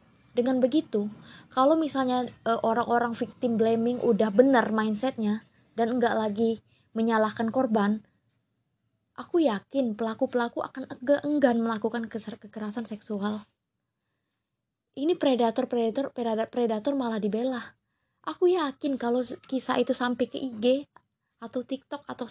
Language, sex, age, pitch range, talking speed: Indonesian, female, 20-39, 205-255 Hz, 115 wpm